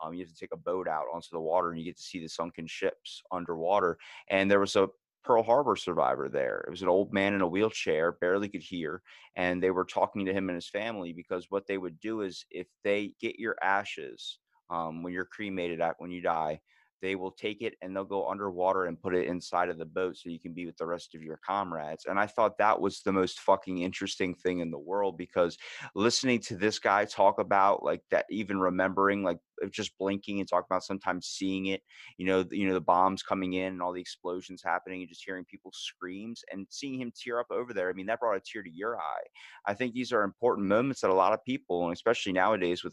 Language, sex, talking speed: English, male, 245 wpm